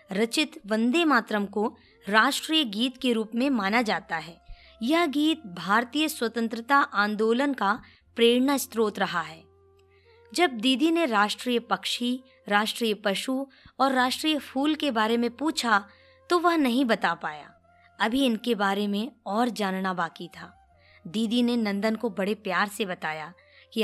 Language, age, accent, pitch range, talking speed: Hindi, 20-39, native, 205-280 Hz, 145 wpm